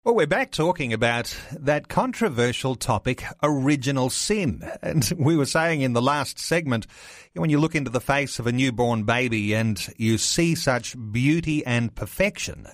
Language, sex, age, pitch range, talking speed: English, male, 40-59, 115-150 Hz, 165 wpm